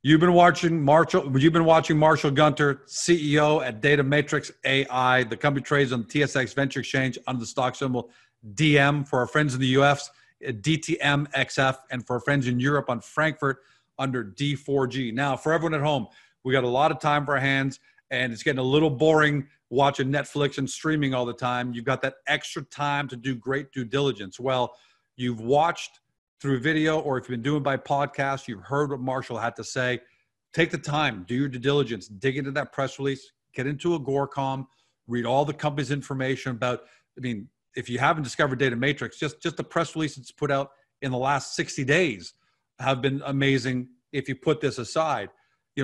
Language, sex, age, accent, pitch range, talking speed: English, male, 40-59, American, 125-145 Hz, 195 wpm